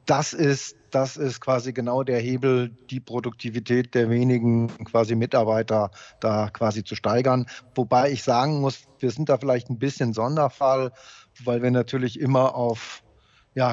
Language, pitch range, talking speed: German, 125-145 Hz, 155 wpm